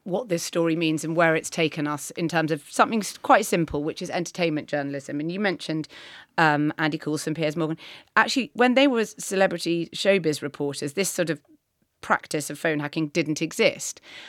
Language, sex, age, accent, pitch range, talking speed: English, female, 30-49, British, 150-200 Hz, 180 wpm